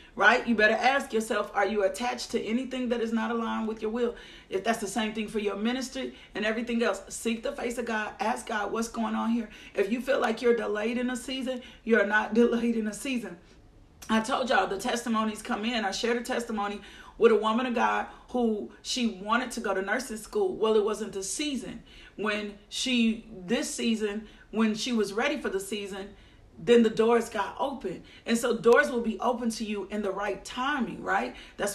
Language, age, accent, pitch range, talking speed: English, 40-59, American, 215-245 Hz, 215 wpm